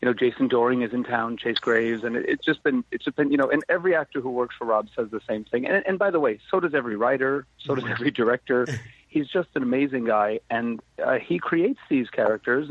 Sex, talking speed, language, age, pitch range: male, 255 wpm, English, 40-59, 120-150 Hz